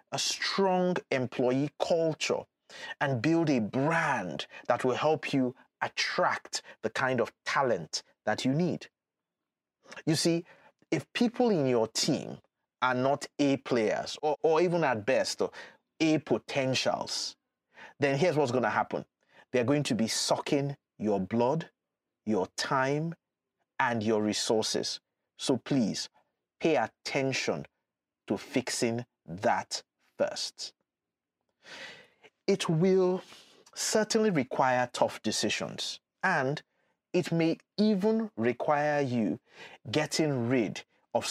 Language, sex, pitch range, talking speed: English, male, 120-160 Hz, 115 wpm